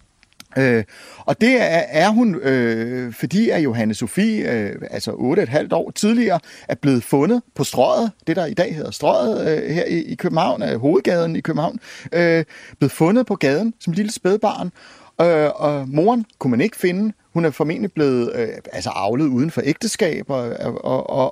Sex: male